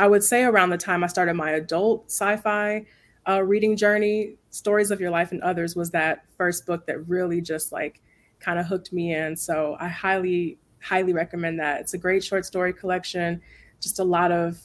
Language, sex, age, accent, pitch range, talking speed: English, female, 20-39, American, 170-195 Hz, 195 wpm